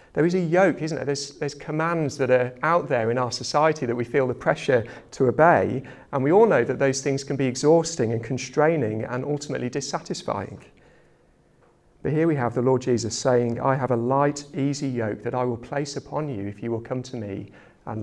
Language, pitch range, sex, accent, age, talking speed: English, 115-140 Hz, male, British, 40-59, 215 wpm